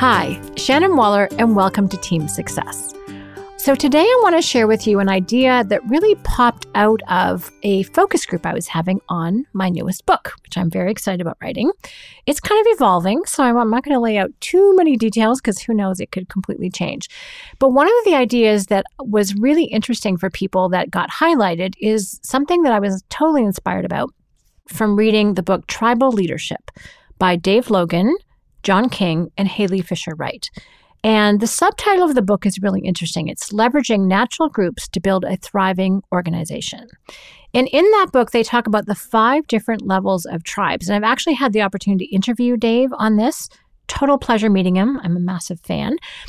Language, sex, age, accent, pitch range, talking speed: English, female, 40-59, American, 185-260 Hz, 190 wpm